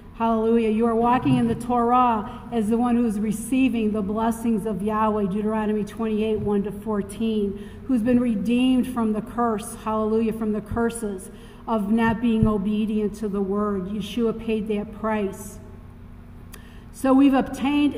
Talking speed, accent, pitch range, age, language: 145 wpm, American, 215-250 Hz, 50-69, English